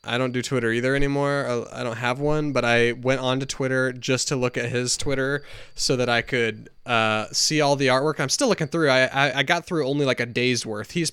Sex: male